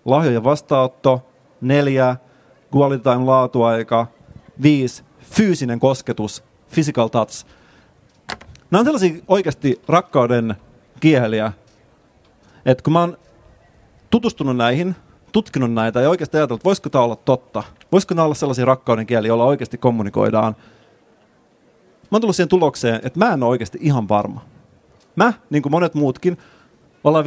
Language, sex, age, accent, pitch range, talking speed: Finnish, male, 30-49, native, 115-145 Hz, 125 wpm